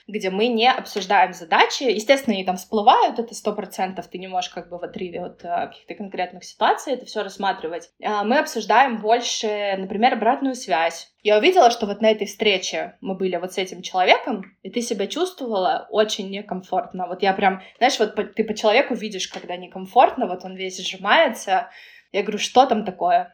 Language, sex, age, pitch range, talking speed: Russian, female, 20-39, 190-235 Hz, 180 wpm